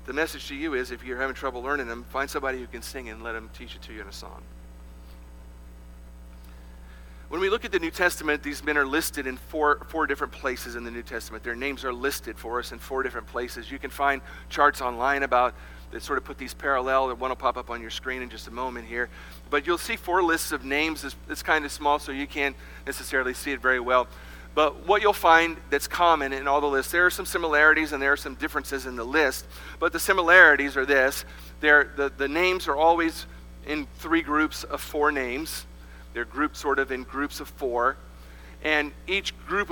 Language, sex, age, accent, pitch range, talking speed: English, male, 40-59, American, 120-155 Hz, 225 wpm